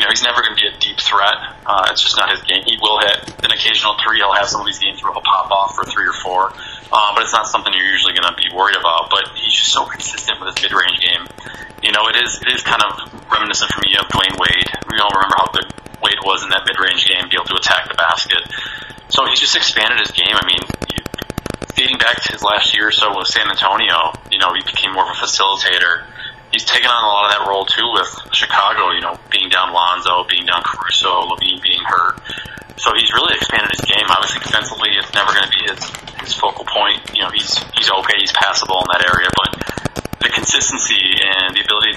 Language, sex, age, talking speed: English, male, 20-39, 245 wpm